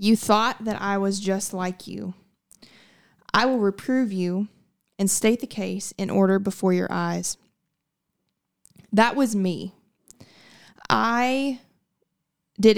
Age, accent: 20-39, American